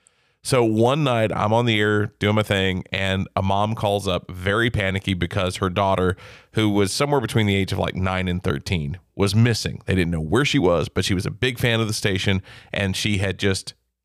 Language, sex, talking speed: English, male, 220 wpm